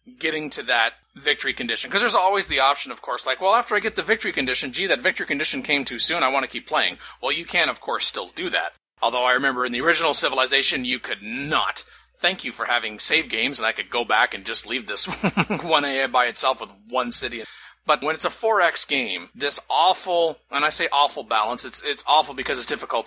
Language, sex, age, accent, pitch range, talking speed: English, male, 30-49, American, 130-180 Hz, 235 wpm